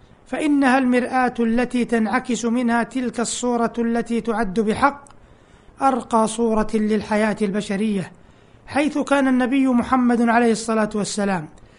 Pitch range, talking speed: 220-255 Hz, 105 wpm